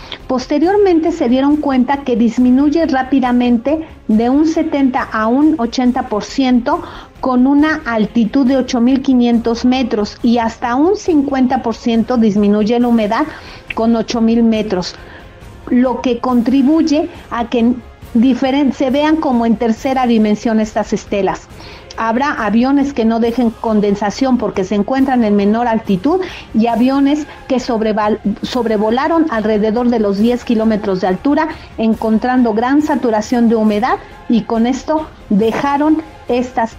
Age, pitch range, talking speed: 50-69, 220-270 Hz, 120 wpm